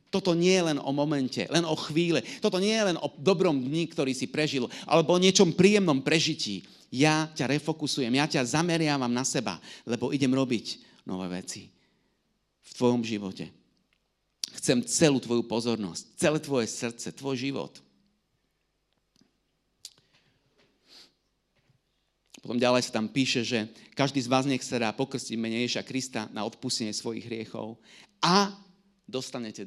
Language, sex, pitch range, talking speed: Slovak, male, 115-155 Hz, 140 wpm